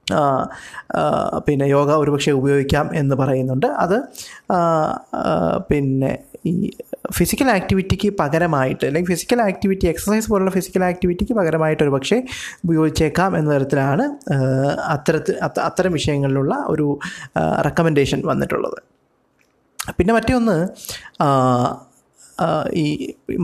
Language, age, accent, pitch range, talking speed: Malayalam, 20-39, native, 145-185 Hz, 85 wpm